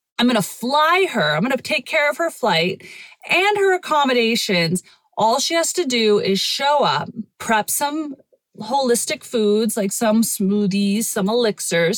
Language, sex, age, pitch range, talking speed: English, female, 30-49, 185-235 Hz, 165 wpm